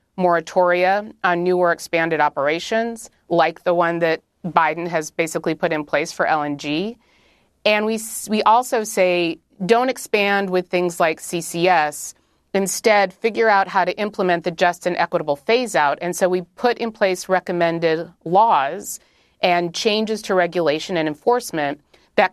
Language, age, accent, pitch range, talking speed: English, 30-49, American, 165-200 Hz, 150 wpm